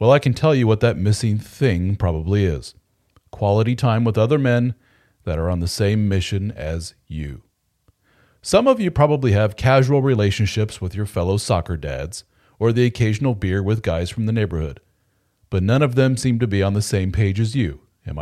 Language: English